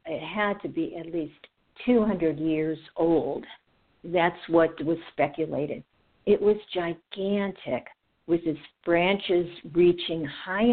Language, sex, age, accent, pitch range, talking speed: English, female, 60-79, American, 160-210 Hz, 115 wpm